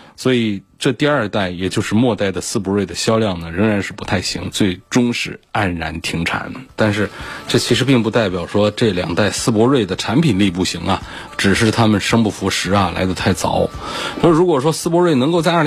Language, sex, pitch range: Chinese, male, 90-115 Hz